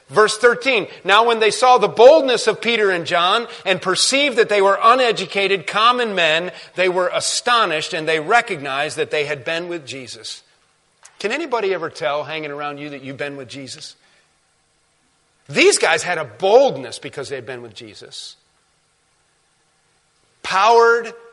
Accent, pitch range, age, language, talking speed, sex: American, 155-230 Hz, 40-59, English, 155 wpm, male